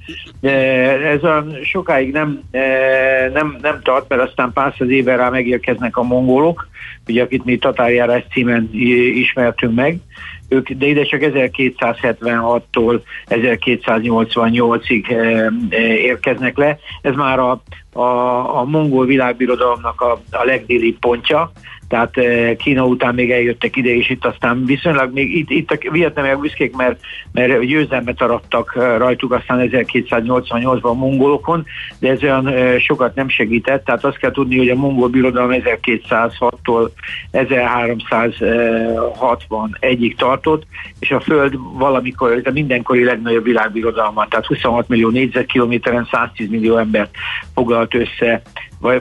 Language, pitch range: Hungarian, 120-130 Hz